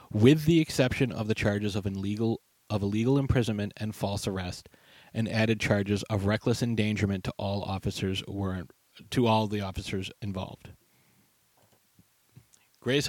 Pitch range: 100-120 Hz